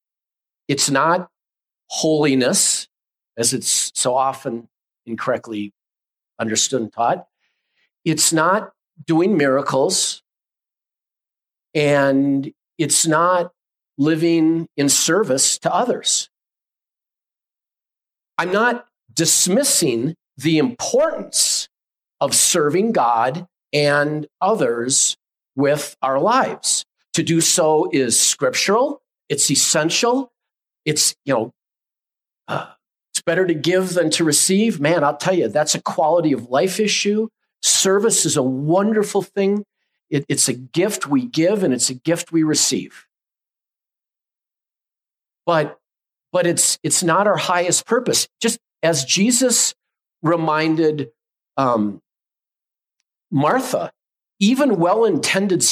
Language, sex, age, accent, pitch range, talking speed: English, male, 50-69, American, 145-190 Hz, 105 wpm